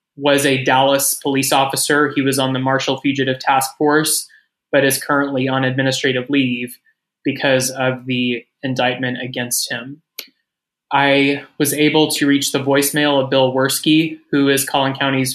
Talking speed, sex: 155 wpm, male